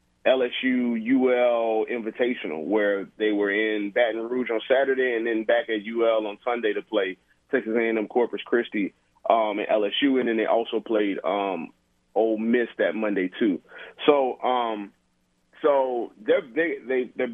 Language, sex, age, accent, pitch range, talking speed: English, male, 30-49, American, 115-135 Hz, 150 wpm